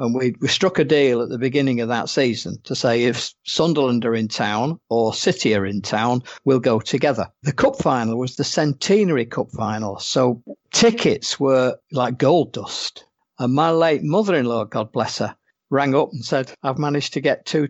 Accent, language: British, English